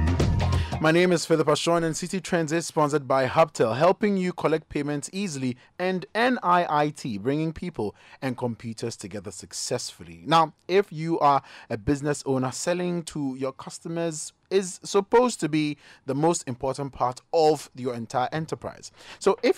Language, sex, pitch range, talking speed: English, male, 120-170 Hz, 155 wpm